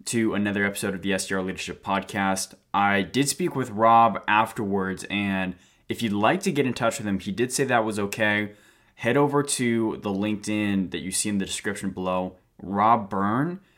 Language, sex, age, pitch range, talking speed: English, male, 20-39, 95-110 Hz, 190 wpm